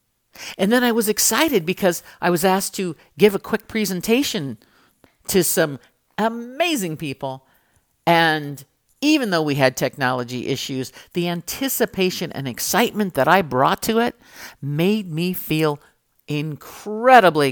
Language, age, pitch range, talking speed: English, 50-69, 135-190 Hz, 130 wpm